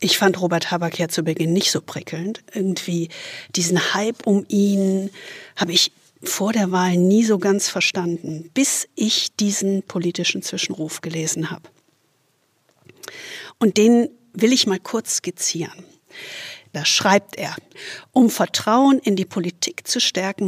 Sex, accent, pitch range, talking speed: female, German, 185-230 Hz, 140 wpm